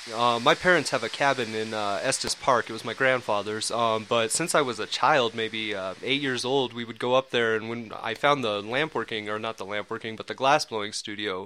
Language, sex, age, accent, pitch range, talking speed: English, male, 20-39, American, 110-130 Hz, 250 wpm